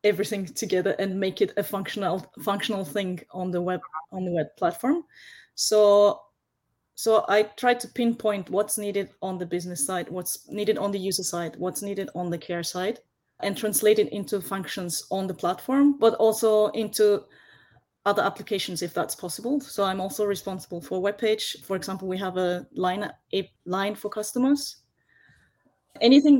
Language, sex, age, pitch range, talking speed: English, female, 20-39, 185-220 Hz, 170 wpm